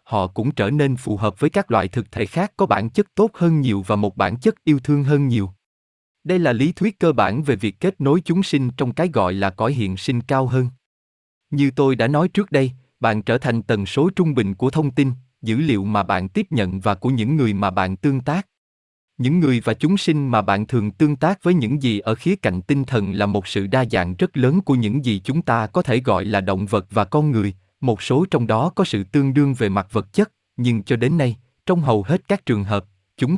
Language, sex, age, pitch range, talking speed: Vietnamese, male, 20-39, 105-155 Hz, 250 wpm